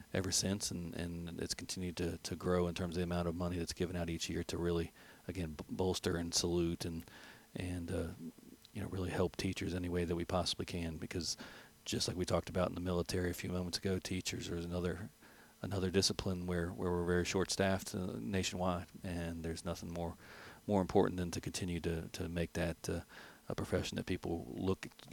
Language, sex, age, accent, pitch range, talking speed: English, male, 40-59, American, 85-95 Hz, 205 wpm